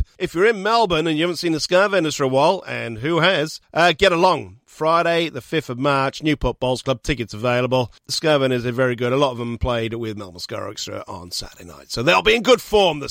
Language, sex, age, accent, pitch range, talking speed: English, male, 40-59, British, 120-175 Hz, 250 wpm